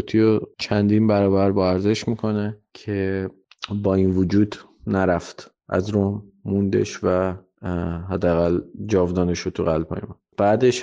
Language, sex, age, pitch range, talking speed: Persian, male, 20-39, 95-110 Hz, 105 wpm